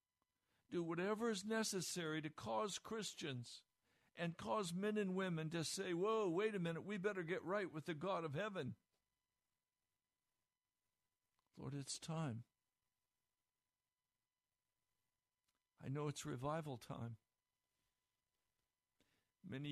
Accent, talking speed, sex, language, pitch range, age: American, 110 wpm, male, English, 130-175 Hz, 60-79